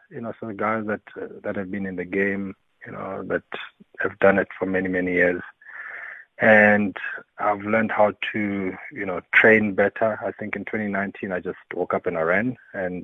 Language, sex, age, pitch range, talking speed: English, male, 30-49, 95-115 Hz, 200 wpm